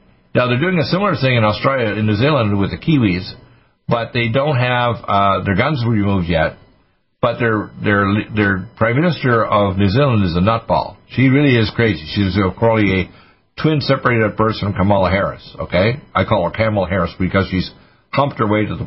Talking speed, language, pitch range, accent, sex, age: 195 wpm, English, 95-125 Hz, American, male, 60-79